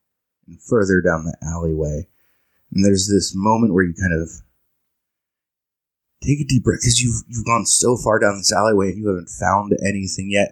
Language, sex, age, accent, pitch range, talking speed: English, male, 20-39, American, 85-100 Hz, 175 wpm